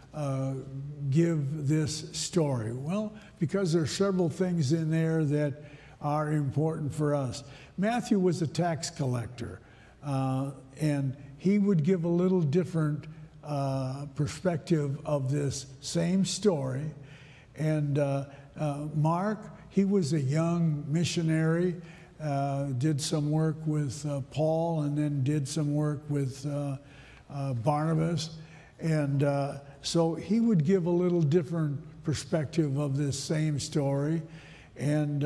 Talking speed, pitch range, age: 130 wpm, 140-165 Hz, 60-79